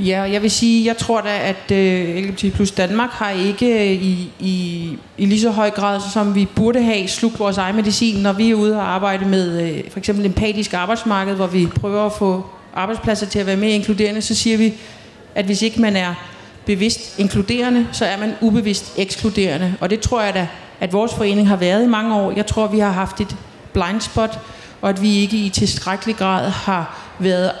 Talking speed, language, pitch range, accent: 215 wpm, Danish, 185-215 Hz, native